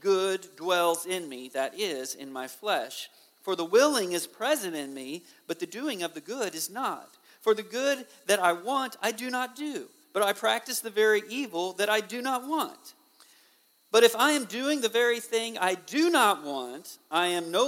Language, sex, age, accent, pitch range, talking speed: English, male, 50-69, American, 160-235 Hz, 205 wpm